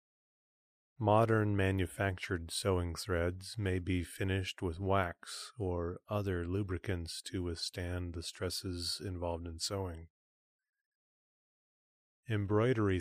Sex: male